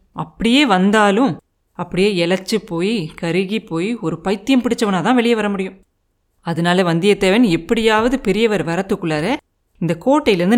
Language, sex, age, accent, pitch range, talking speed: Tamil, female, 30-49, native, 170-225 Hz, 115 wpm